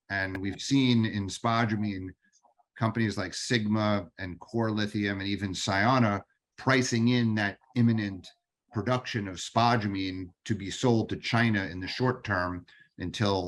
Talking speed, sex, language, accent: 140 wpm, male, English, American